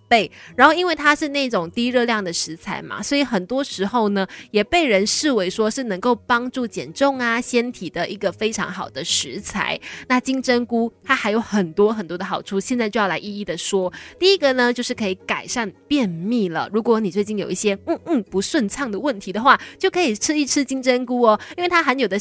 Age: 20-39